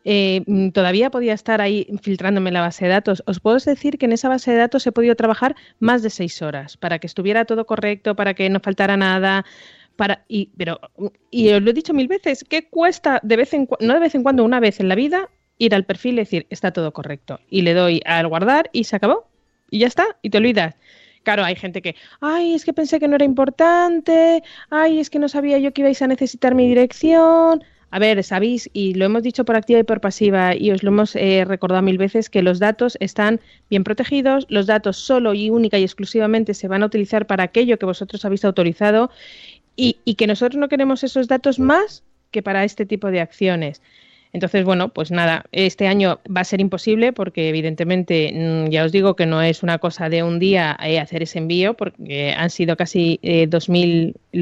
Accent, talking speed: Spanish, 220 wpm